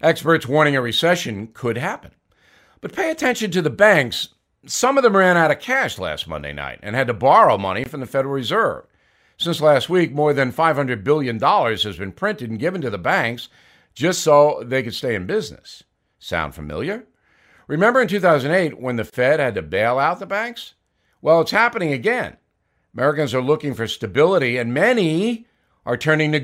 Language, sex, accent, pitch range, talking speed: English, male, American, 120-170 Hz, 185 wpm